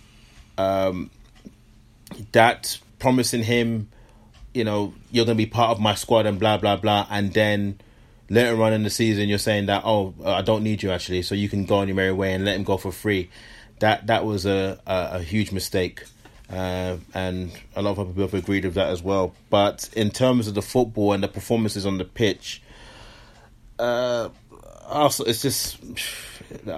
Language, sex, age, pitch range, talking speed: English, male, 30-49, 100-115 Hz, 185 wpm